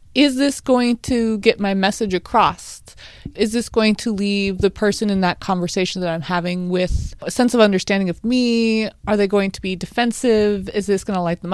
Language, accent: English, American